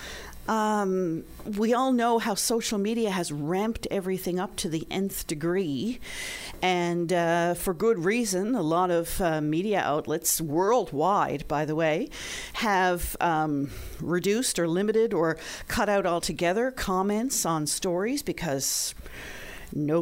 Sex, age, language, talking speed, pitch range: female, 40-59, English, 130 wpm, 150-210 Hz